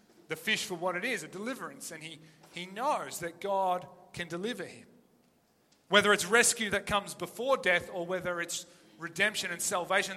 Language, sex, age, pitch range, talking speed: English, male, 30-49, 155-195 Hz, 175 wpm